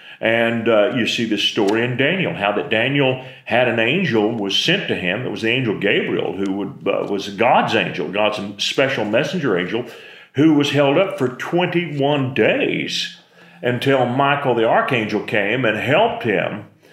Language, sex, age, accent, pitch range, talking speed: English, male, 40-59, American, 110-130 Hz, 165 wpm